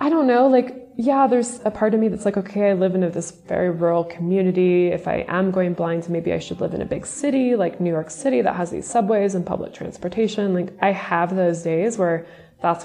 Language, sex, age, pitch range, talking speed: English, female, 20-39, 170-210 Hz, 240 wpm